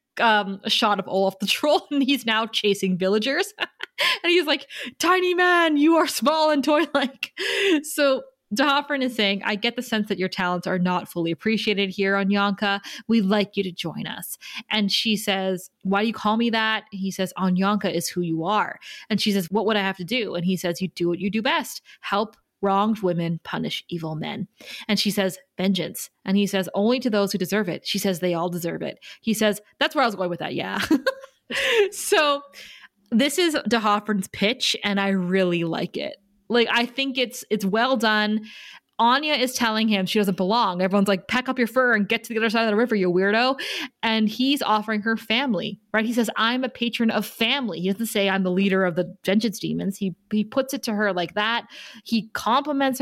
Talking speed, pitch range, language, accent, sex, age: 215 wpm, 195-255 Hz, English, American, female, 20-39